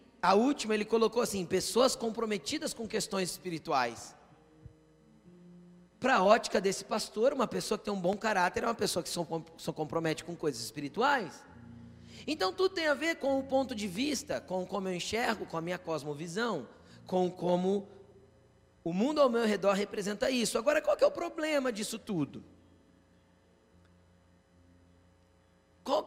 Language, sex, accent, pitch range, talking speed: Portuguese, male, Brazilian, 165-250 Hz, 155 wpm